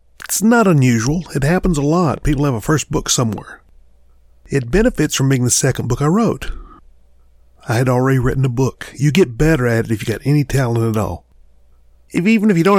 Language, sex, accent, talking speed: English, male, American, 210 wpm